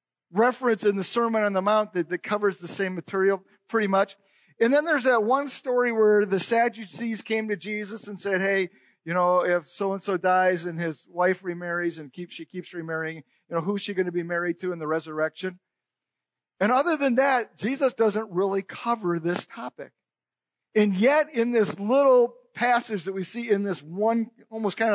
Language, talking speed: English, 190 wpm